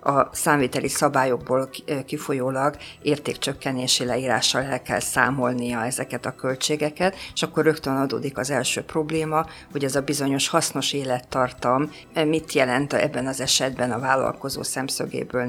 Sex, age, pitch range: female, 50-69, 130-150 Hz